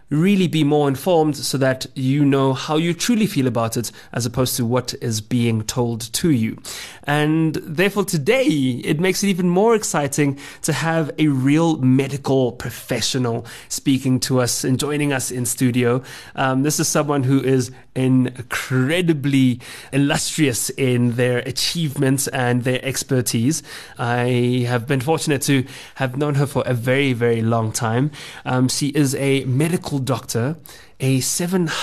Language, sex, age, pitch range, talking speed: English, male, 20-39, 125-150 Hz, 155 wpm